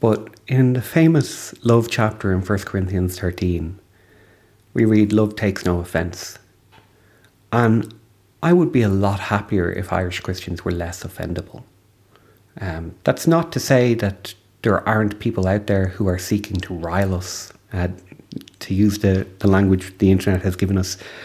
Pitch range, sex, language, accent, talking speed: 90-110 Hz, male, English, Irish, 160 wpm